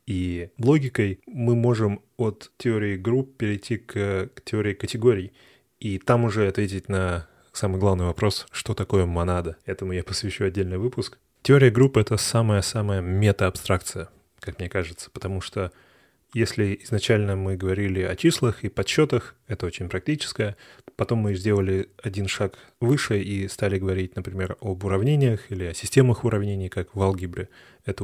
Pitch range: 95-115 Hz